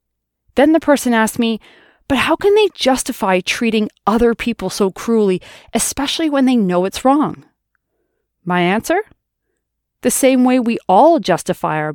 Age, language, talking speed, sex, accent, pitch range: 30-49, English, 150 wpm, female, American, 190-280 Hz